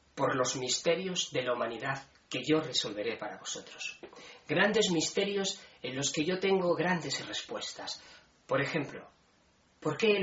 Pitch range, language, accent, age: 150-195 Hz, Spanish, Spanish, 30-49